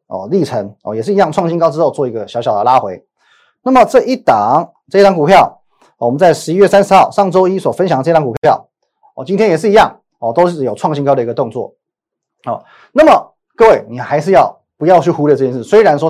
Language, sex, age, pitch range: Chinese, male, 30-49, 135-195 Hz